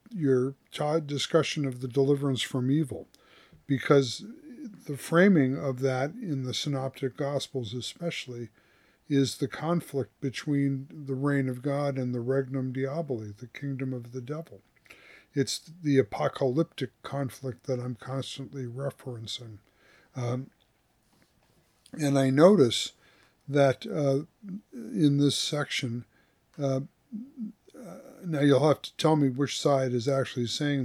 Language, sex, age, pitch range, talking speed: English, male, 50-69, 130-145 Hz, 125 wpm